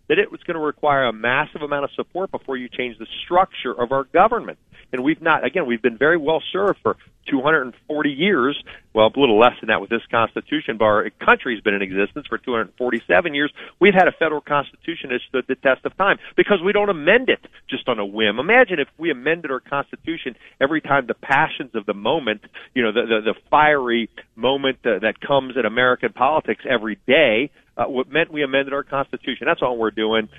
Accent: American